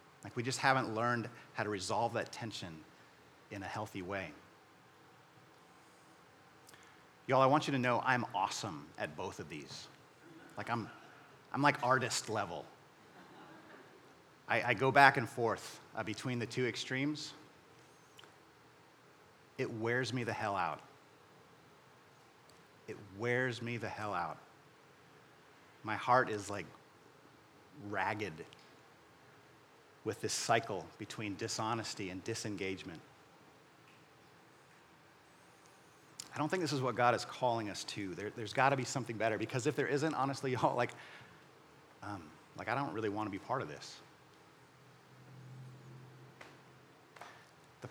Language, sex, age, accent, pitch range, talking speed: English, male, 40-59, American, 115-140 Hz, 130 wpm